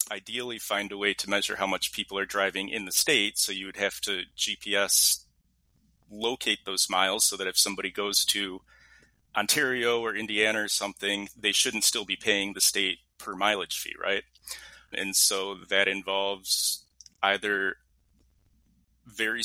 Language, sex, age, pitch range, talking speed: English, male, 30-49, 95-120 Hz, 155 wpm